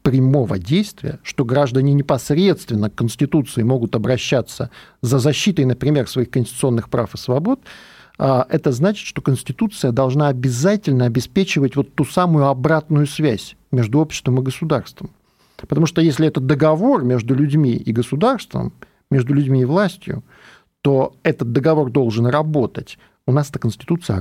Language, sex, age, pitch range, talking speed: Russian, male, 50-69, 125-155 Hz, 135 wpm